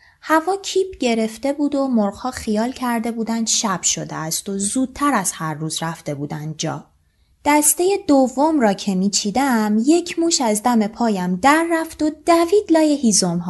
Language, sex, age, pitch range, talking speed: Persian, female, 20-39, 205-310 Hz, 160 wpm